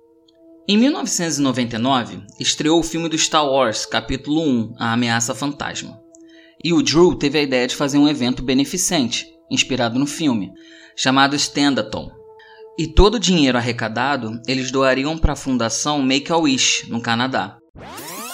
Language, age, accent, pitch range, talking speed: Portuguese, 20-39, Brazilian, 130-170 Hz, 135 wpm